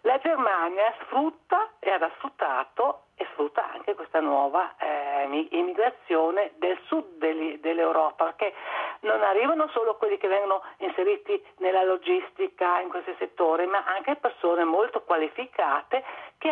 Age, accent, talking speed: 50-69, native, 125 wpm